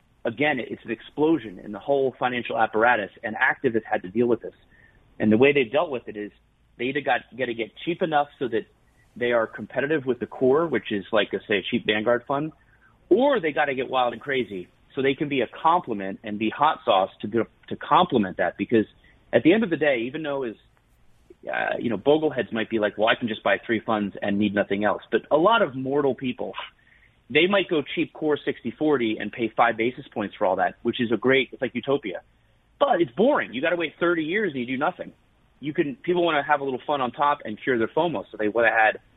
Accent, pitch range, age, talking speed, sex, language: American, 110-140 Hz, 30-49, 240 wpm, male, English